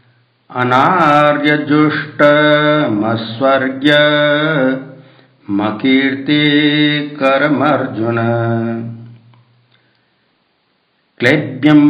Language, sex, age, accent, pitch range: Hindi, male, 60-79, native, 120-150 Hz